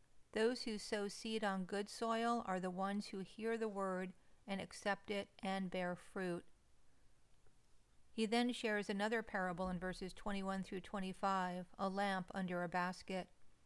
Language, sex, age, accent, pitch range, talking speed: English, female, 50-69, American, 185-220 Hz, 155 wpm